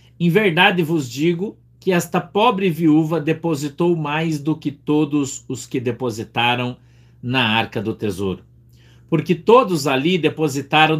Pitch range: 110-140 Hz